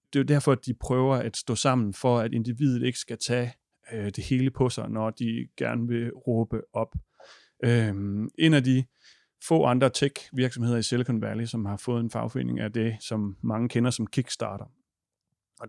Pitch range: 115-130 Hz